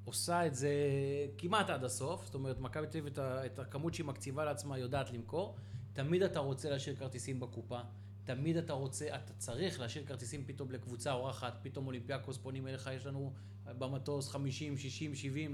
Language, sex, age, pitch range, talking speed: Hebrew, male, 20-39, 115-150 Hz, 175 wpm